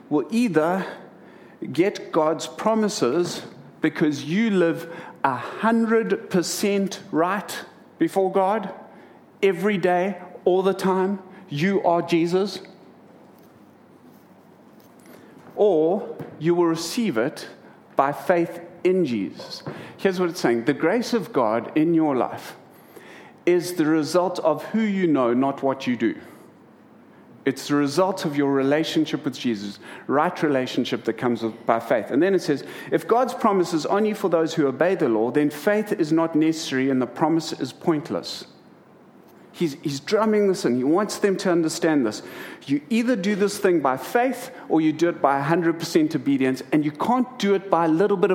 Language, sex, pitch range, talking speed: English, male, 155-205 Hz, 155 wpm